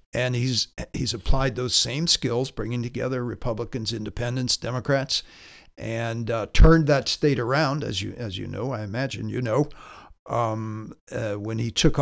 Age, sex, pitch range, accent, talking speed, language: 60-79, male, 110-135 Hz, American, 160 wpm, English